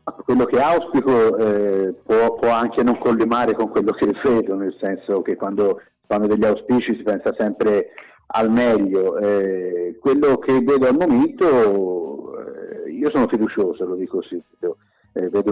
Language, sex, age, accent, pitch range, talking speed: Italian, male, 50-69, native, 100-130 Hz, 155 wpm